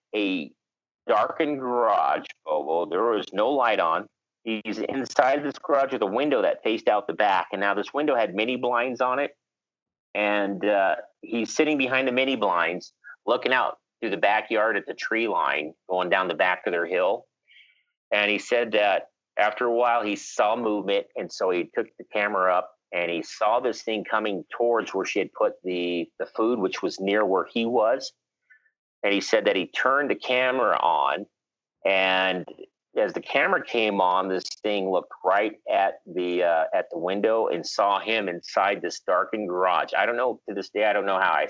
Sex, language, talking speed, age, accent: male, English, 195 wpm, 40-59, American